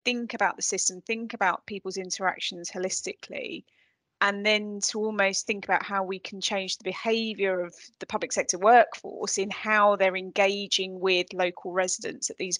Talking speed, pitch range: 165 wpm, 190-220 Hz